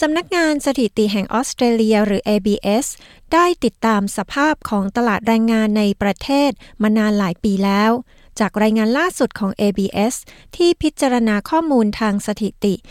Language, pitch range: Thai, 205-255 Hz